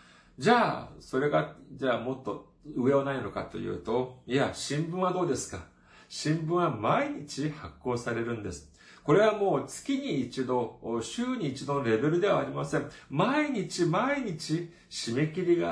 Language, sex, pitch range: Japanese, male, 110-155 Hz